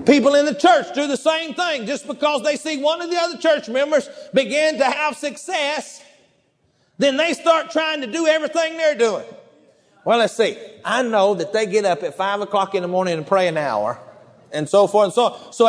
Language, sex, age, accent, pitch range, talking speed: English, male, 40-59, American, 260-330 Hz, 220 wpm